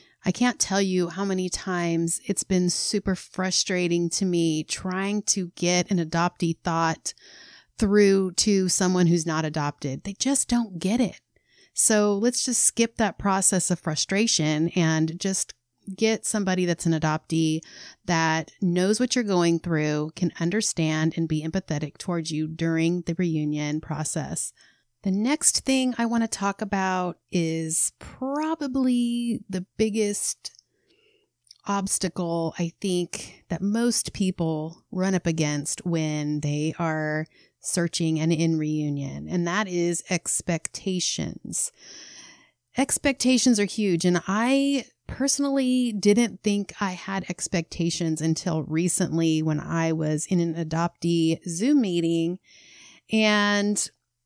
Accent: American